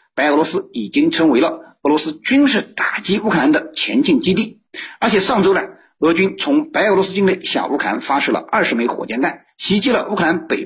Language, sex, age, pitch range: Chinese, male, 50-69, 190-305 Hz